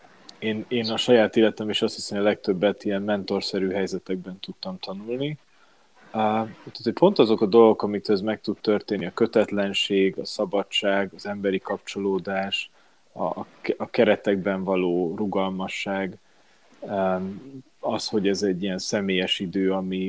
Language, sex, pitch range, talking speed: Hungarian, male, 95-110 Hz, 130 wpm